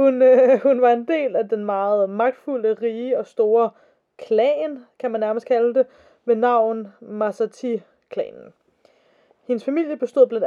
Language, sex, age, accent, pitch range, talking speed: Danish, female, 20-39, native, 220-285 Hz, 150 wpm